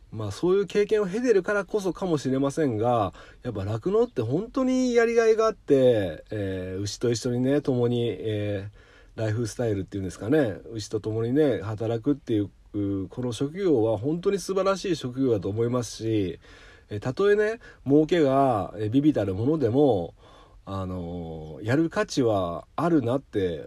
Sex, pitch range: male, 100-145 Hz